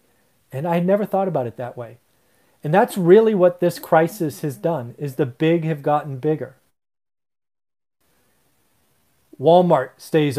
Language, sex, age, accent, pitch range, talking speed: English, male, 30-49, American, 125-160 Hz, 145 wpm